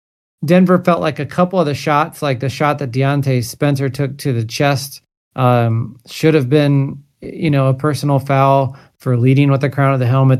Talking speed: 200 wpm